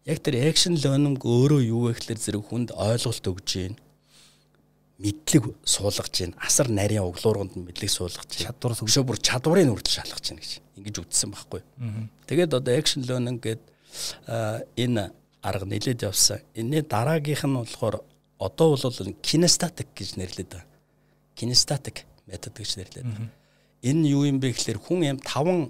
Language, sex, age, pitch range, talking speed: Russian, male, 60-79, 100-135 Hz, 80 wpm